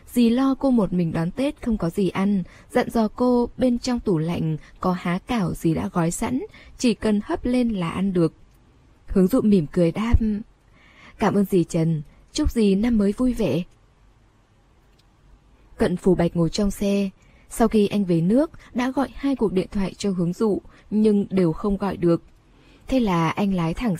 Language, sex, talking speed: Vietnamese, female, 195 wpm